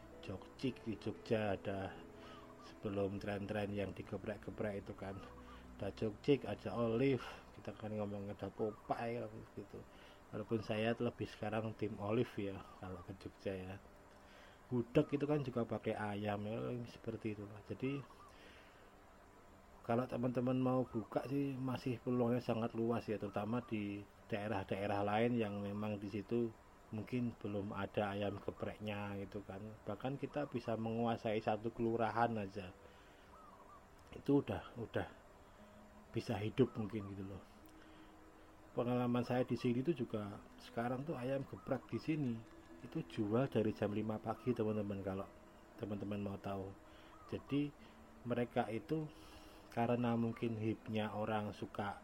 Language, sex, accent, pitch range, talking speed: Indonesian, male, native, 100-120 Hz, 130 wpm